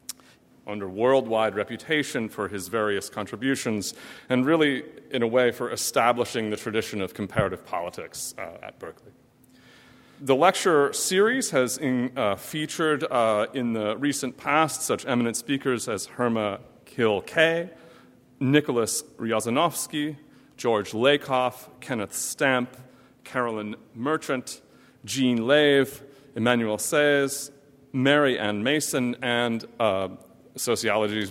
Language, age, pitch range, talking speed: English, 40-59, 110-145 Hz, 110 wpm